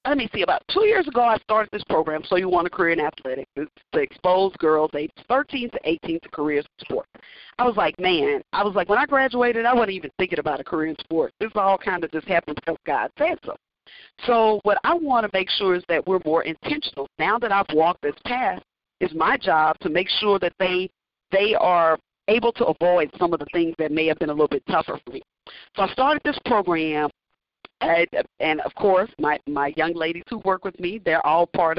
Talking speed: 230 wpm